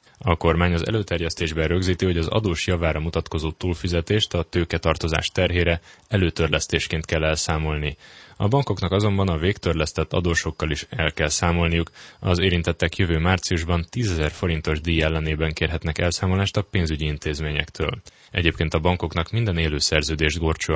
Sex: male